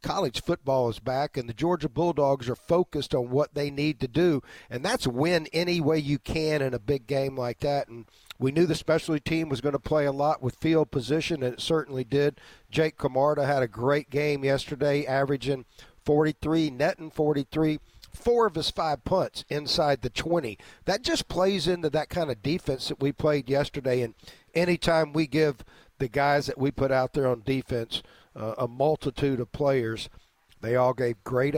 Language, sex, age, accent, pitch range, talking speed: English, male, 50-69, American, 125-155 Hz, 195 wpm